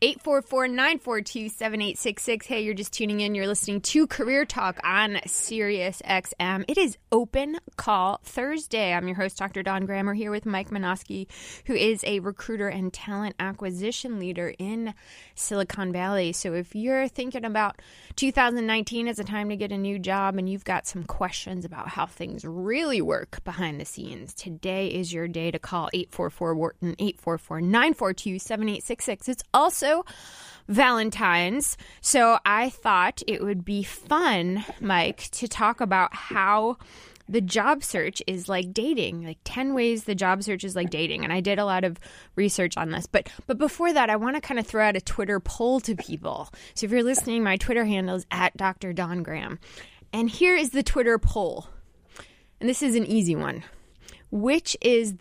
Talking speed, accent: 165 wpm, American